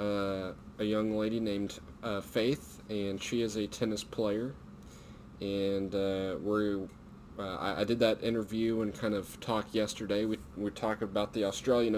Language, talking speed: English, 165 wpm